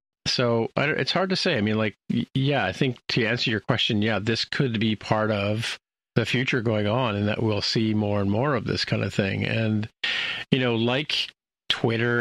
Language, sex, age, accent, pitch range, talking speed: English, male, 50-69, American, 105-120 Hz, 205 wpm